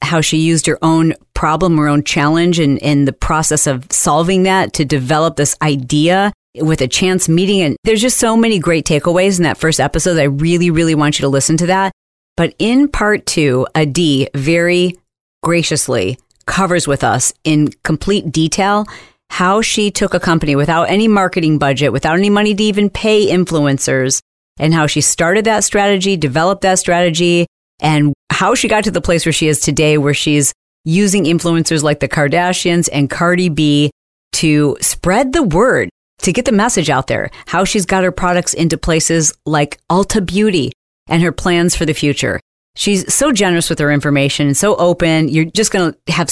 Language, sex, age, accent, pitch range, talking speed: English, female, 40-59, American, 150-190 Hz, 190 wpm